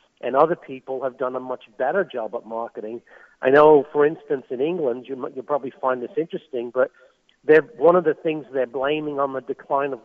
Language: English